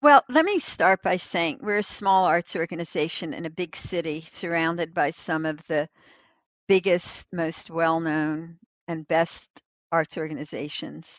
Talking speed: 145 wpm